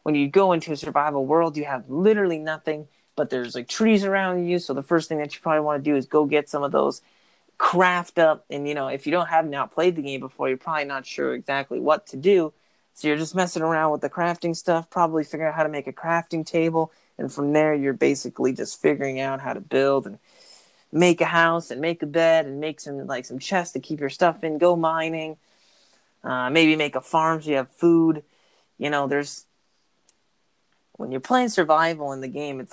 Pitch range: 140-170 Hz